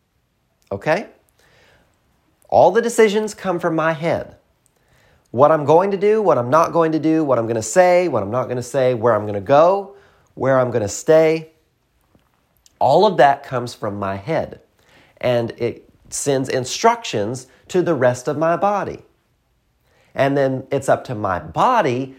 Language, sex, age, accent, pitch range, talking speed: English, male, 30-49, American, 120-180 Hz, 175 wpm